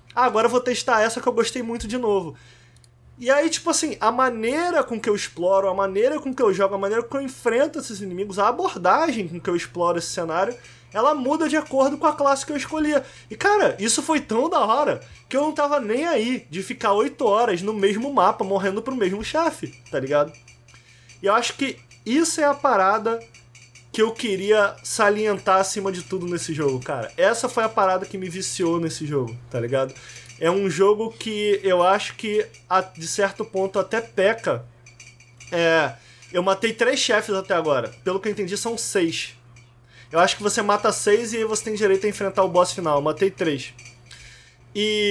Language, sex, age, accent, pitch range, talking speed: Portuguese, male, 20-39, Brazilian, 165-235 Hz, 205 wpm